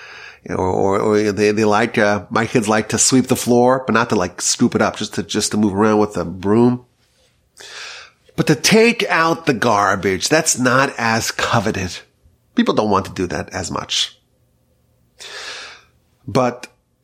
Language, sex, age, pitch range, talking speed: English, male, 30-49, 105-130 Hz, 175 wpm